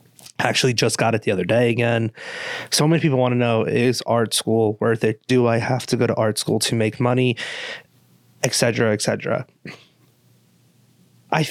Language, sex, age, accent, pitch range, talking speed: English, male, 20-39, American, 110-140 Hz, 170 wpm